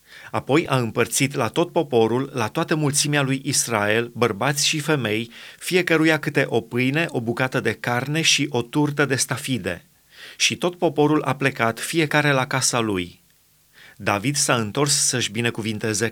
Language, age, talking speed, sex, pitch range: Romanian, 30-49, 155 wpm, male, 120-155 Hz